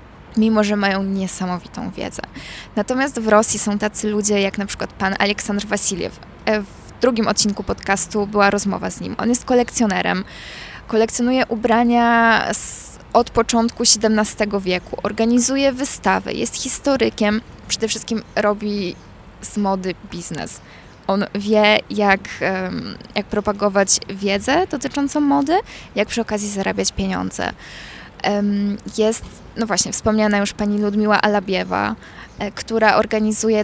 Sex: female